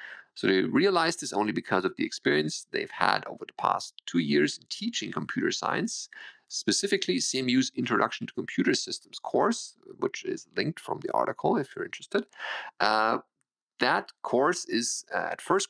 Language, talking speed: English, 160 wpm